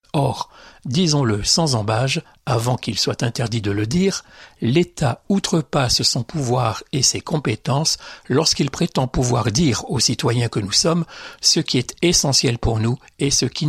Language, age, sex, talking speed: French, 60-79, male, 160 wpm